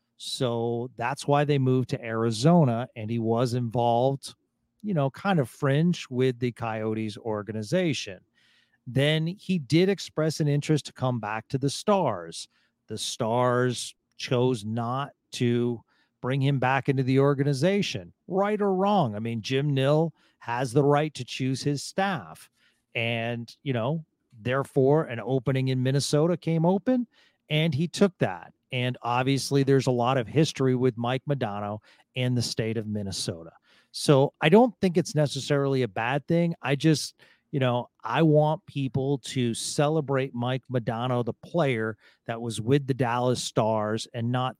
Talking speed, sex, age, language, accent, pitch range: 155 wpm, male, 40-59, English, American, 120-150 Hz